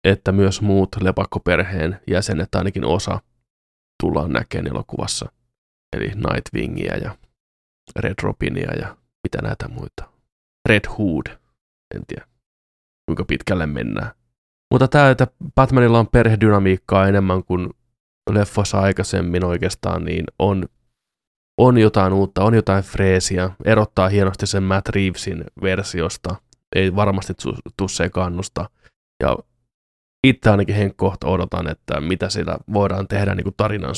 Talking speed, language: 115 wpm, Finnish